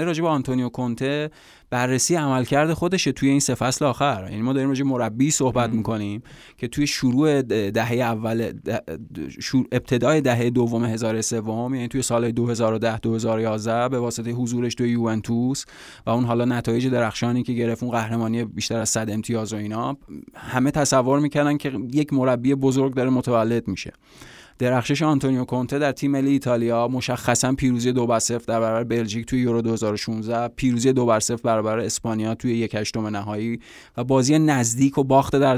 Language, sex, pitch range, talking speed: Persian, male, 115-135 Hz, 170 wpm